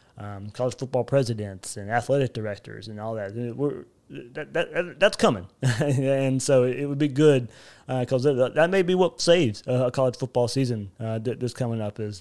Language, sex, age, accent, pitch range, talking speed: English, male, 20-39, American, 115-140 Hz, 180 wpm